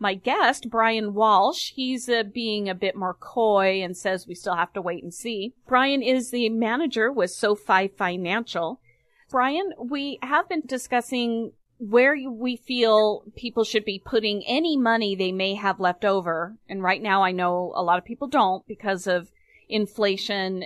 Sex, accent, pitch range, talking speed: female, American, 180-235 Hz, 170 wpm